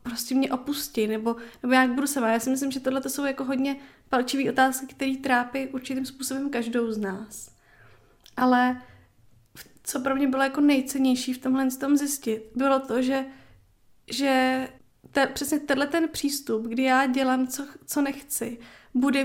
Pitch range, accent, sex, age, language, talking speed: 245-275 Hz, native, female, 20-39, Czech, 160 wpm